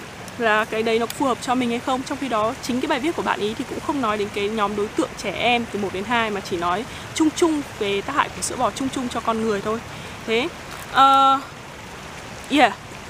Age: 20-39